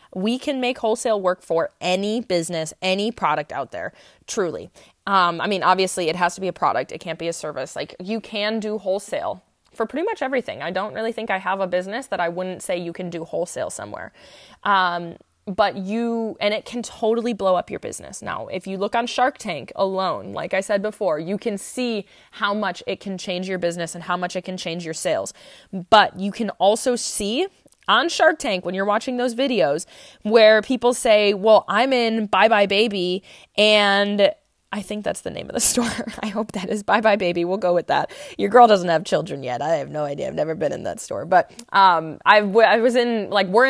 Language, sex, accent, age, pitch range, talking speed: English, female, American, 20-39, 185-225 Hz, 220 wpm